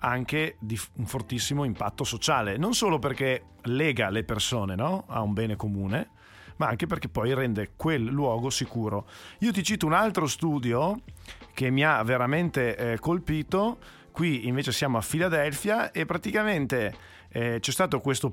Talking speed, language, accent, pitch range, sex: 155 wpm, Italian, native, 115-170 Hz, male